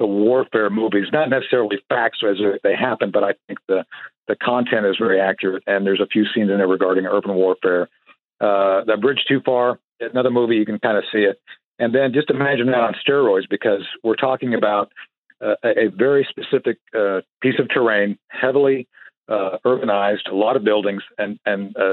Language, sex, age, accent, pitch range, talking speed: English, male, 50-69, American, 100-125 Hz, 190 wpm